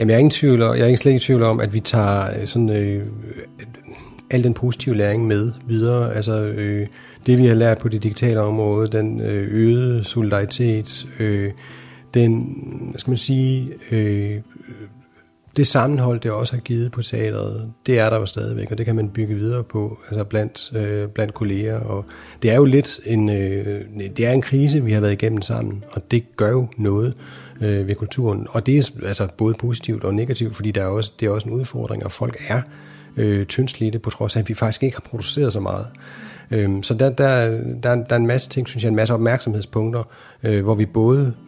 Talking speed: 200 wpm